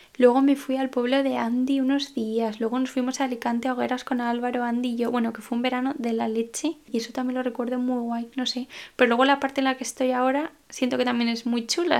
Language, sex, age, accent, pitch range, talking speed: Spanish, female, 10-29, Spanish, 235-265 Hz, 255 wpm